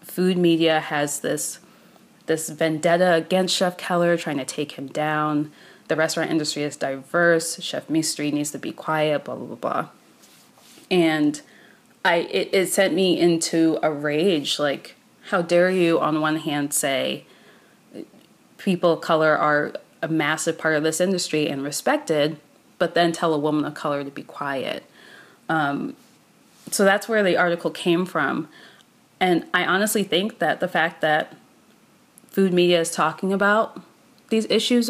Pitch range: 155-180 Hz